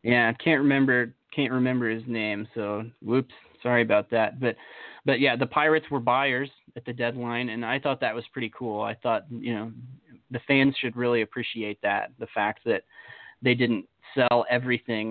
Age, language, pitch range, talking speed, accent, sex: 20-39, English, 115-145 Hz, 185 wpm, American, male